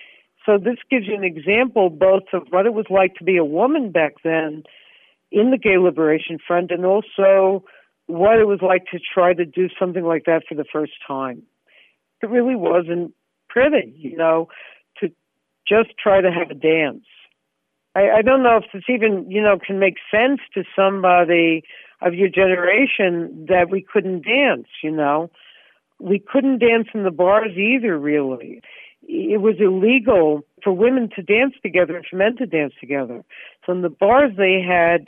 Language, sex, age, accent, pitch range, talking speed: English, female, 60-79, American, 165-210 Hz, 180 wpm